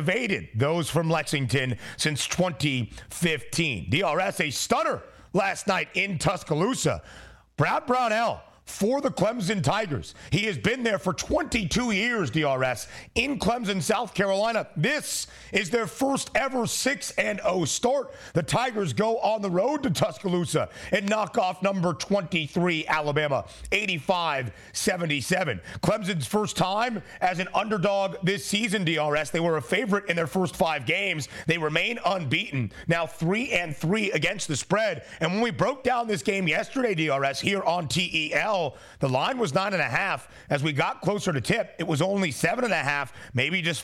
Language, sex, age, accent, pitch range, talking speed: English, male, 40-59, American, 155-200 Hz, 155 wpm